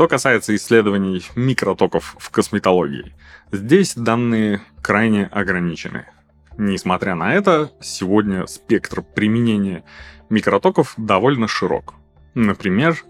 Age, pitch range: 20-39, 90-125 Hz